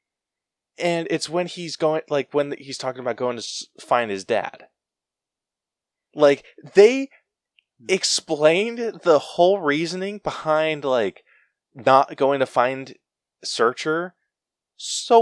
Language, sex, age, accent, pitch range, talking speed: English, male, 20-39, American, 110-160 Hz, 115 wpm